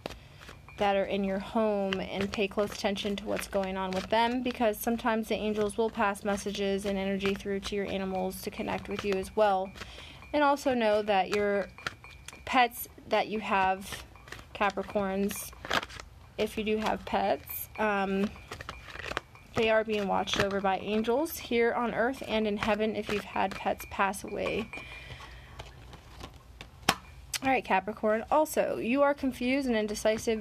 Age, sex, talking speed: 30-49, female, 155 wpm